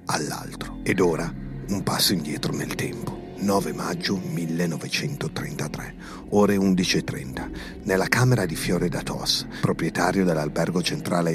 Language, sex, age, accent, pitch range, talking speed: Italian, male, 50-69, native, 85-110 Hz, 115 wpm